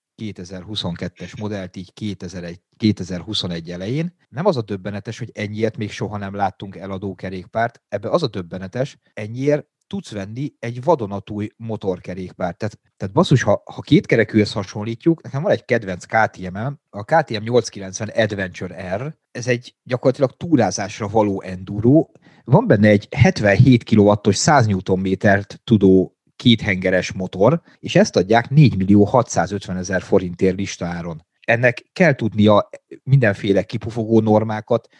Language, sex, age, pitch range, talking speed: Hungarian, male, 30-49, 95-120 Hz, 125 wpm